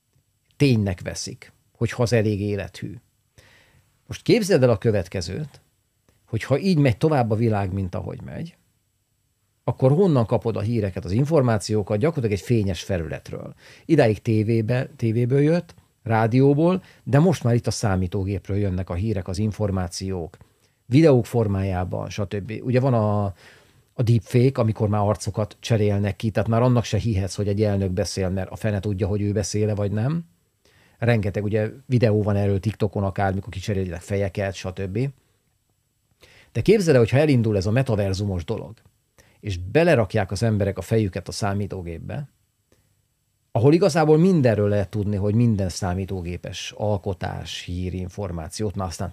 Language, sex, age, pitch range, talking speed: Hungarian, male, 40-59, 100-120 Hz, 145 wpm